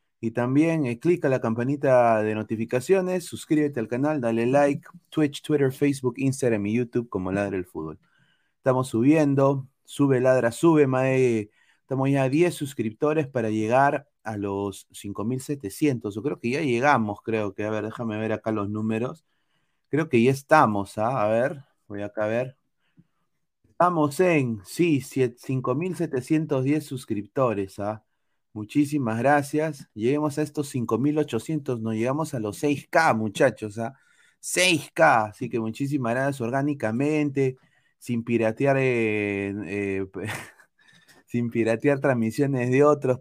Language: Spanish